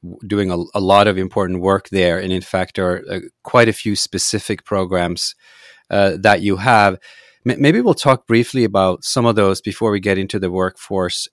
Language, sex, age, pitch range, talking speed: English, male, 30-49, 95-115 Hz, 195 wpm